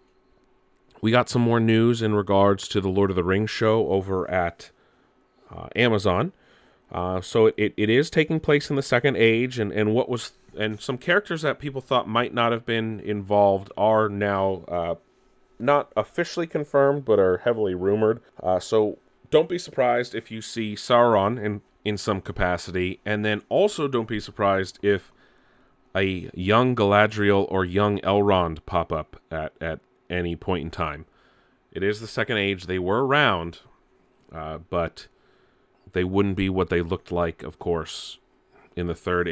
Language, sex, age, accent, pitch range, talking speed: English, male, 30-49, American, 90-115 Hz, 170 wpm